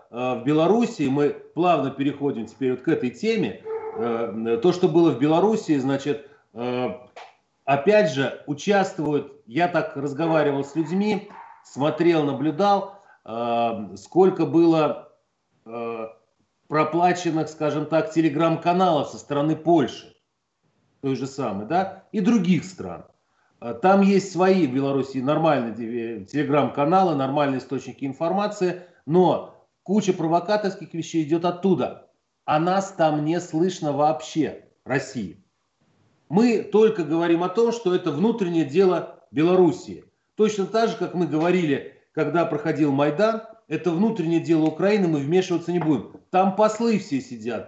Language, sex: Russian, male